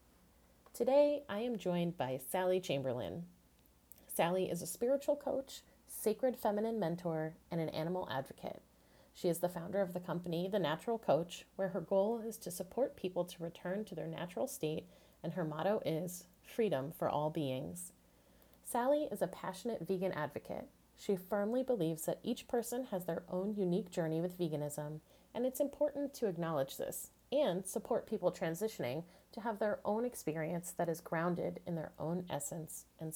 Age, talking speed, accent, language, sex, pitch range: 30-49, 165 wpm, American, English, female, 160-215 Hz